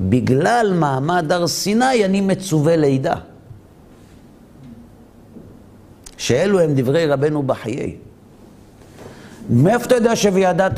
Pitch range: 120-190 Hz